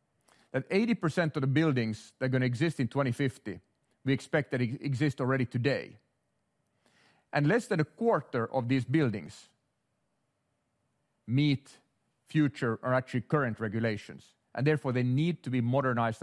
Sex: male